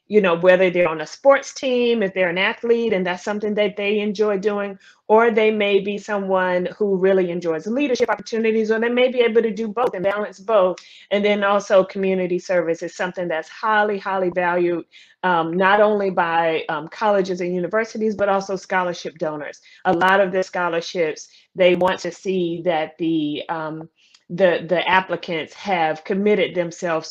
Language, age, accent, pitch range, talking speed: English, 30-49, American, 170-210 Hz, 180 wpm